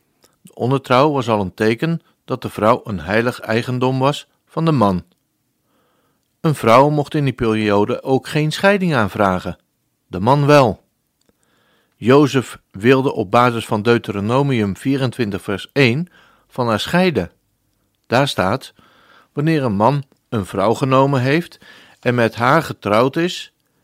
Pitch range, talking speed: 110-155 Hz, 140 wpm